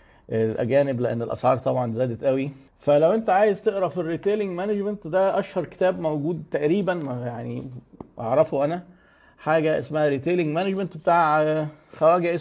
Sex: male